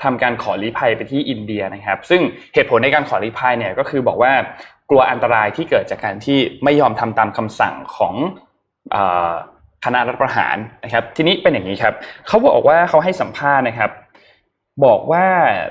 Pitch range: 105-145 Hz